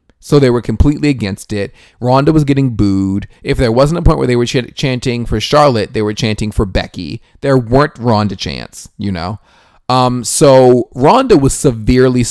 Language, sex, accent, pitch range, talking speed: English, male, American, 100-130 Hz, 180 wpm